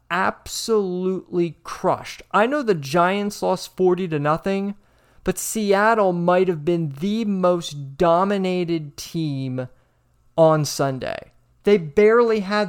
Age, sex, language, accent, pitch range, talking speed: 30-49, male, English, American, 155-200 Hz, 115 wpm